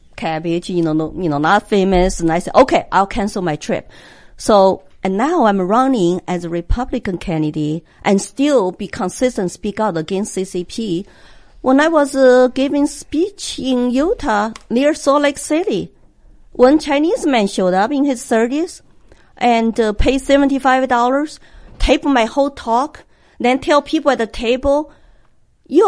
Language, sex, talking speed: English, female, 160 wpm